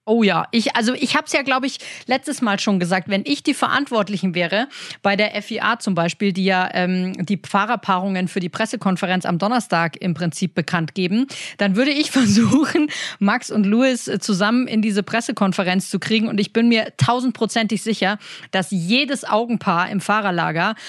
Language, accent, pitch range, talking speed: German, German, 195-235 Hz, 180 wpm